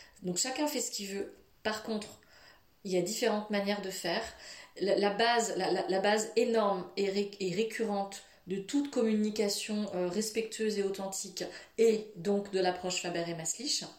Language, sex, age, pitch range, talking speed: French, female, 30-49, 195-250 Hz, 155 wpm